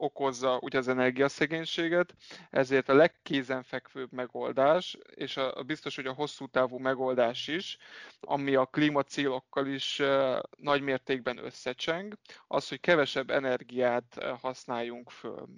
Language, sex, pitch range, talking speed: Hungarian, male, 130-145 Hz, 125 wpm